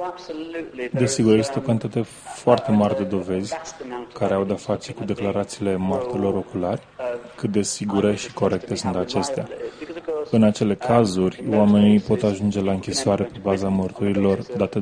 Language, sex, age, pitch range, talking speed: Romanian, male, 20-39, 100-120 Hz, 140 wpm